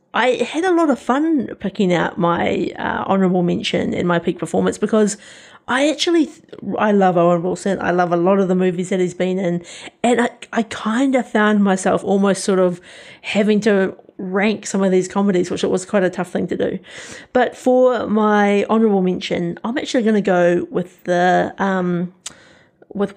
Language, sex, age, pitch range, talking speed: English, female, 30-49, 185-220 Hz, 190 wpm